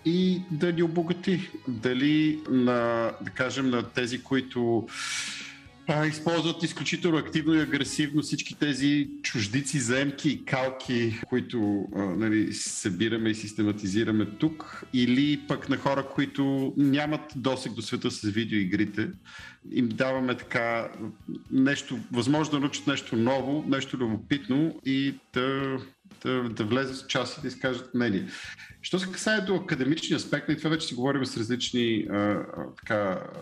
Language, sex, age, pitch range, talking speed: Bulgarian, male, 50-69, 115-145 Hz, 135 wpm